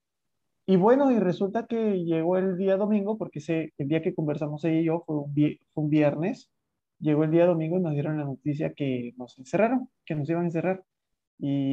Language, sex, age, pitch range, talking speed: Spanish, male, 20-39, 140-165 Hz, 205 wpm